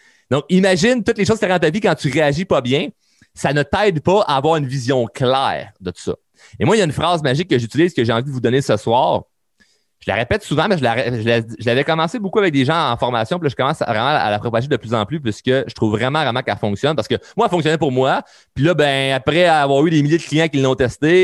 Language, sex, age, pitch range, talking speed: French, male, 30-49, 115-170 Hz, 295 wpm